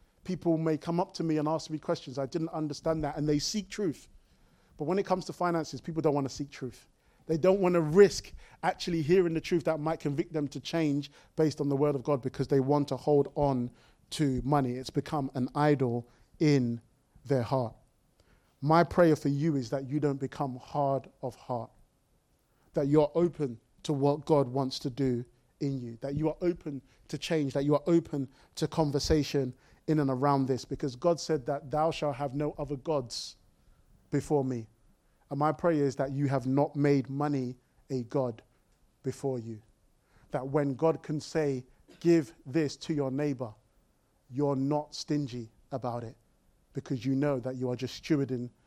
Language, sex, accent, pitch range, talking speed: English, male, British, 130-155 Hz, 190 wpm